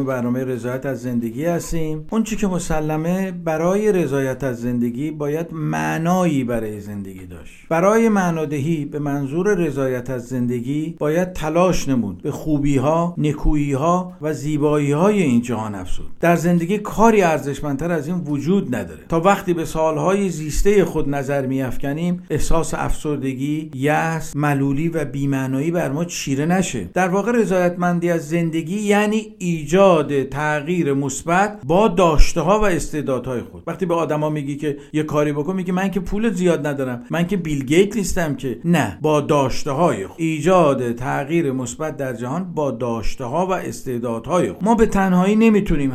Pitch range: 135-180 Hz